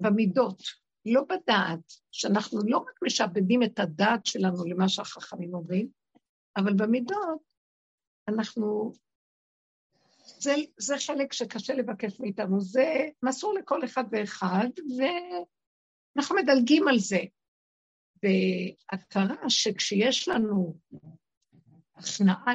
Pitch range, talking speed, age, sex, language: 185-255 Hz, 90 wpm, 60-79, female, Hebrew